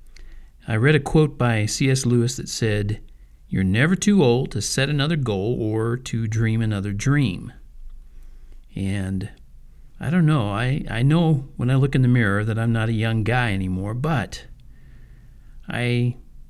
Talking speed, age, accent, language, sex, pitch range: 160 wpm, 50-69, American, English, male, 100-145 Hz